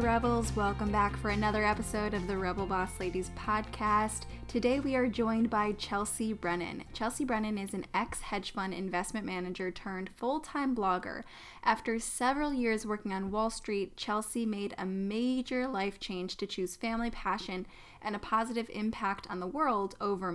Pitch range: 190-230 Hz